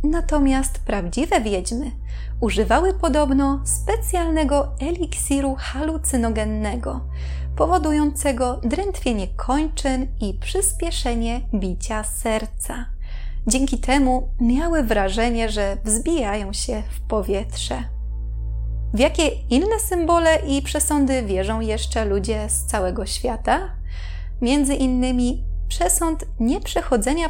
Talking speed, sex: 90 wpm, female